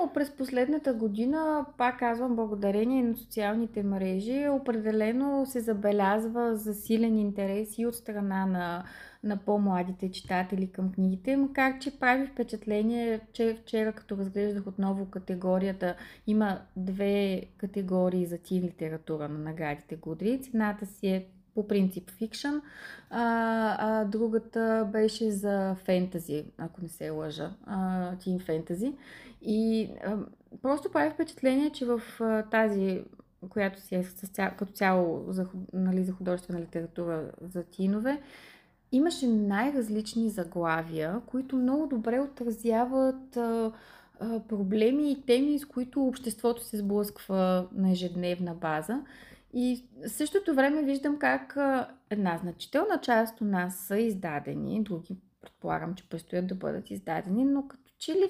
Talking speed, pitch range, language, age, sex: 130 wpm, 185-245 Hz, Bulgarian, 20-39, female